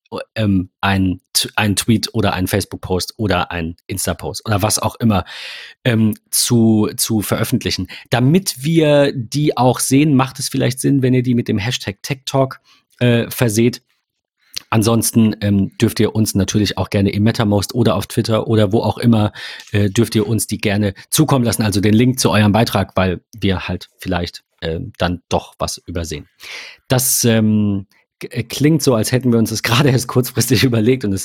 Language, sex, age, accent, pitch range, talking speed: German, male, 40-59, German, 100-125 Hz, 175 wpm